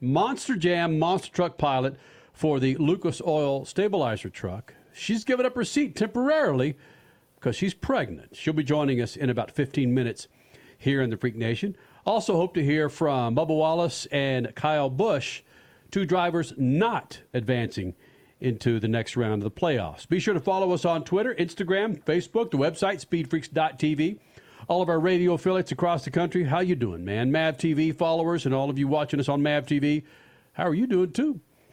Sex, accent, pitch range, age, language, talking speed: male, American, 130-175 Hz, 50-69, English, 180 wpm